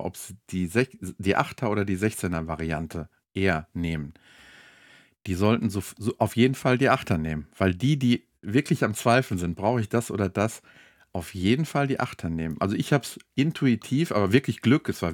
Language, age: German, 50-69